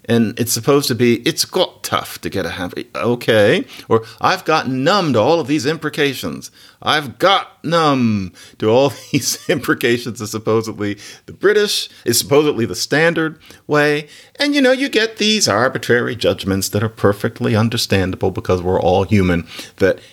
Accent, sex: American, male